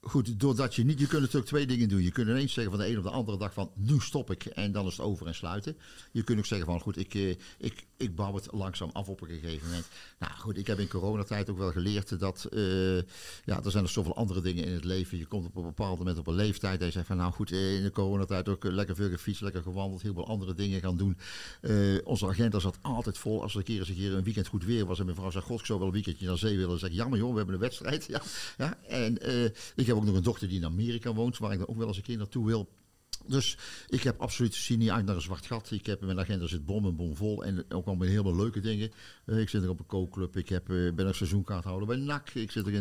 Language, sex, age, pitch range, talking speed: Dutch, male, 50-69, 95-115 Hz, 290 wpm